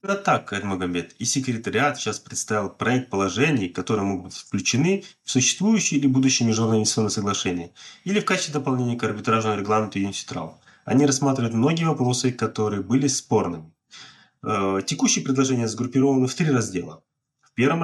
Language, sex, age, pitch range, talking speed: English, male, 20-39, 110-135 Hz, 150 wpm